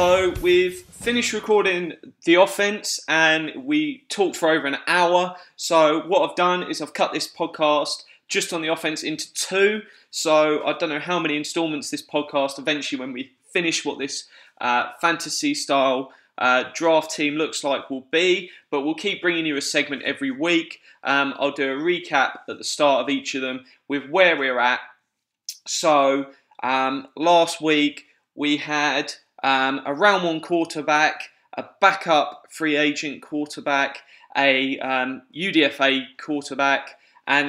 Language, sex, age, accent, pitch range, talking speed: English, male, 20-39, British, 140-170 Hz, 160 wpm